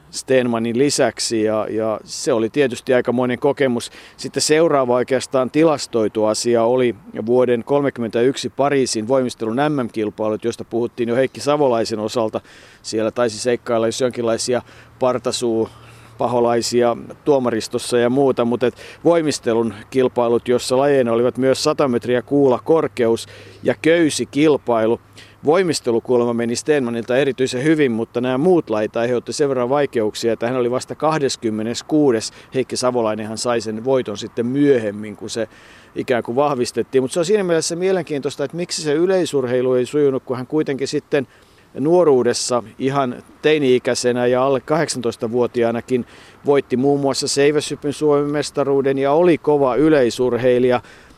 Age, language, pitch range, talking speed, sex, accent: 50-69, Finnish, 115-140 Hz, 130 wpm, male, native